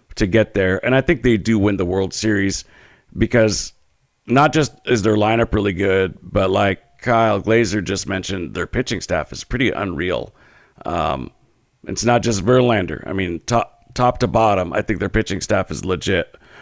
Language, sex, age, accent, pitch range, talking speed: English, male, 50-69, American, 95-130 Hz, 180 wpm